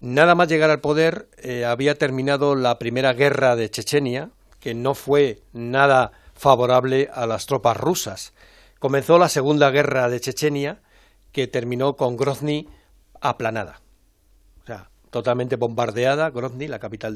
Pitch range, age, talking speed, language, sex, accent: 110-135 Hz, 60-79, 140 wpm, Spanish, male, Spanish